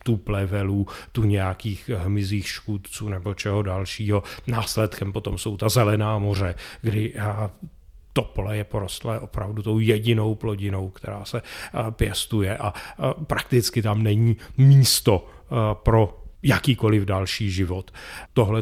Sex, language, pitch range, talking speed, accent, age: male, Czech, 100-115 Hz, 120 wpm, native, 40-59